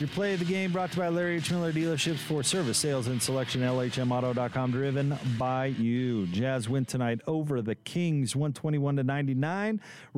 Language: English